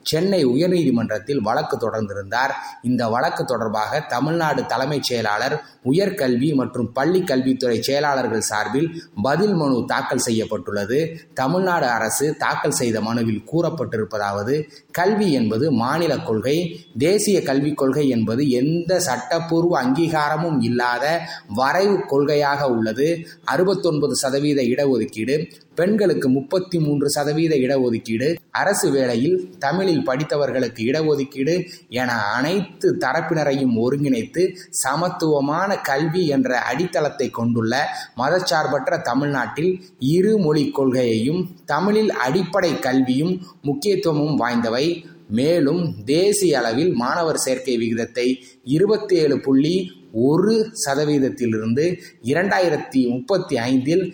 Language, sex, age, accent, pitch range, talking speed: Tamil, male, 20-39, native, 125-170 Hz, 95 wpm